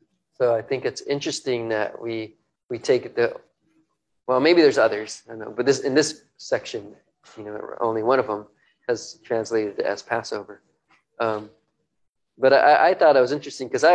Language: English